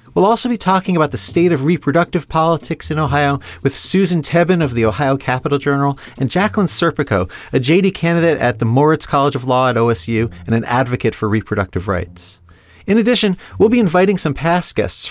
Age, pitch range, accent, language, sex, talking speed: 30-49, 115-170 Hz, American, English, male, 190 wpm